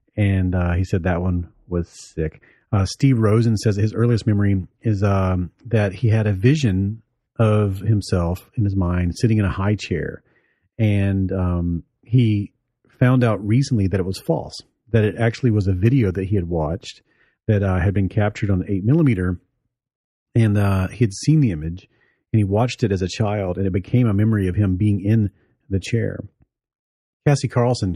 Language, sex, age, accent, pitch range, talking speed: English, male, 40-59, American, 95-120 Hz, 185 wpm